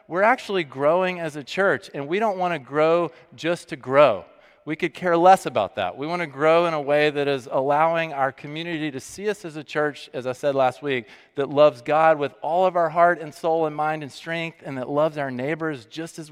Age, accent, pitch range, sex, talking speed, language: 40-59, American, 130-160 Hz, male, 240 wpm, English